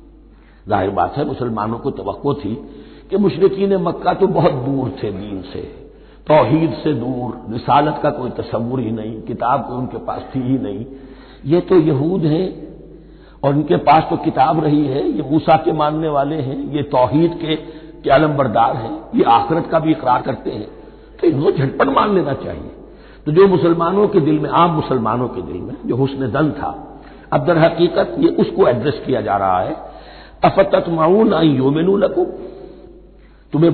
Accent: native